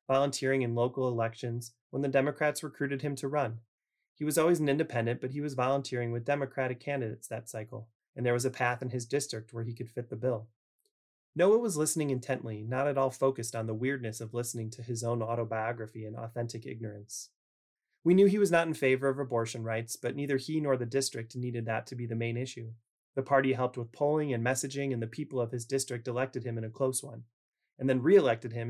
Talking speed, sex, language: 220 wpm, male, English